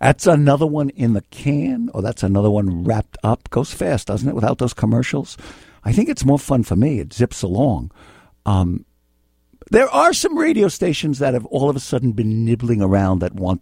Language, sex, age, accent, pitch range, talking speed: English, male, 60-79, American, 105-150 Hz, 205 wpm